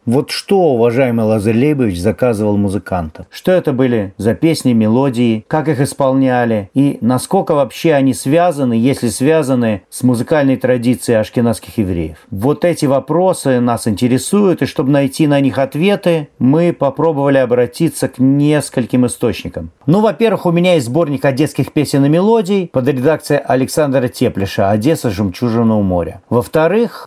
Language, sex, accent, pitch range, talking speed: Russian, male, native, 125-165 Hz, 140 wpm